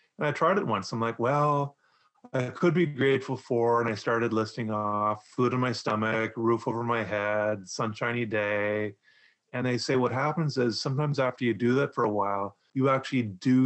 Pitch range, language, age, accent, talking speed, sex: 110-135 Hz, English, 30-49, American, 200 wpm, male